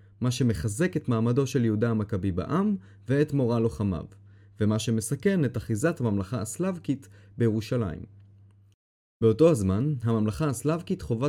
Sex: male